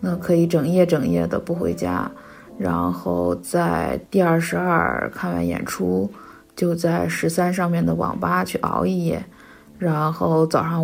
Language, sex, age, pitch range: Chinese, female, 20-39, 160-200 Hz